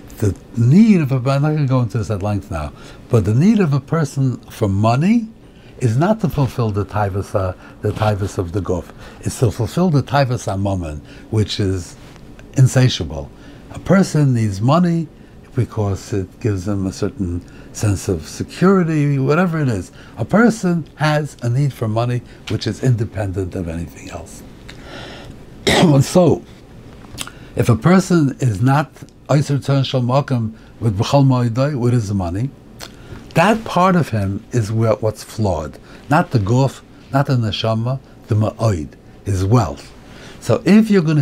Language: English